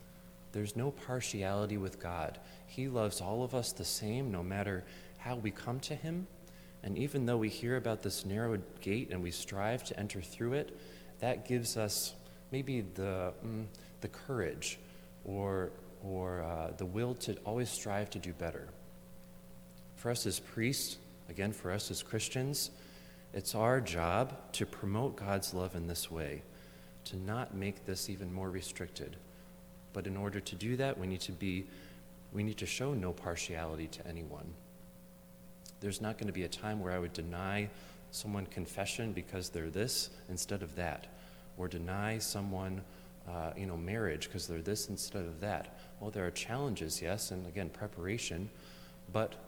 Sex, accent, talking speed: male, American, 165 wpm